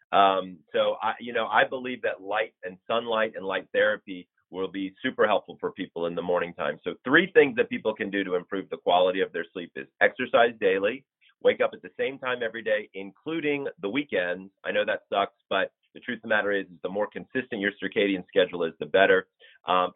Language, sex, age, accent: English, male, 30-49, American